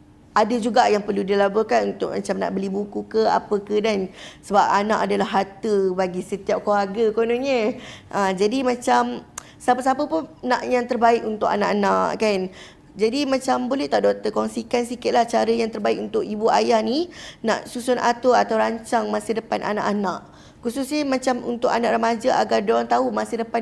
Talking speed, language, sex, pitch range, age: 165 wpm, Malay, female, 205-250 Hz, 20-39